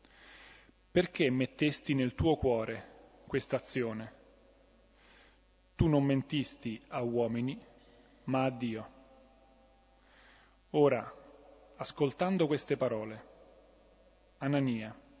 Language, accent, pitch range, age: Italian, native, 120-155 Hz, 30-49